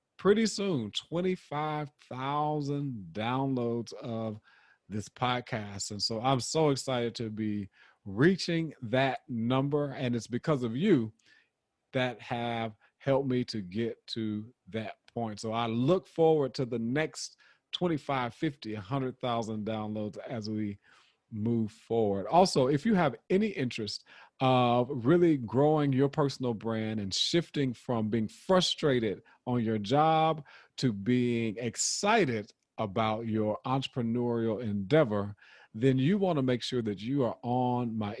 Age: 40-59